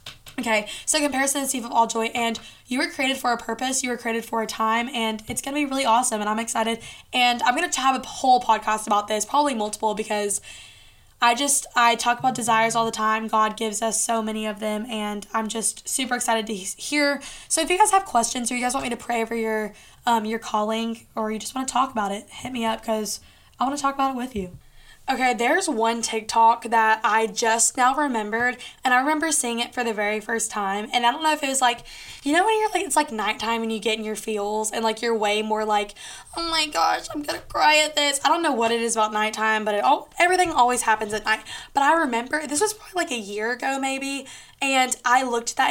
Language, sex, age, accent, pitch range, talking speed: English, female, 10-29, American, 220-265 Hz, 250 wpm